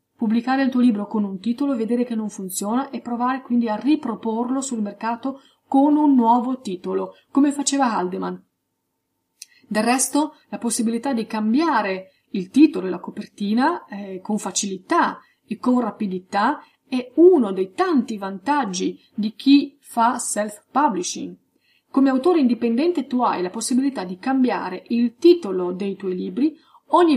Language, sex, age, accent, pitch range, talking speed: Italian, female, 30-49, native, 210-270 Hz, 145 wpm